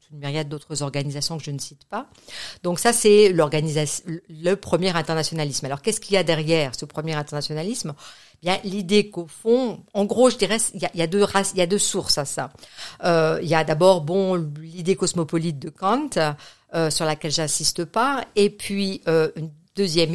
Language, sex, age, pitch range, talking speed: French, female, 50-69, 155-200 Hz, 205 wpm